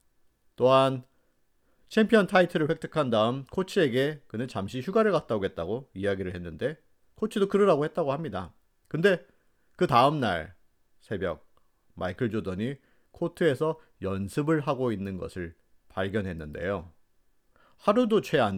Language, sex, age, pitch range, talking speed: English, male, 40-59, 95-145 Hz, 105 wpm